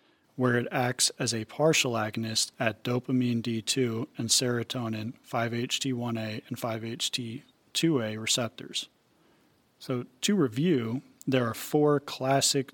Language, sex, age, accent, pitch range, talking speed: English, male, 40-59, American, 115-130 Hz, 110 wpm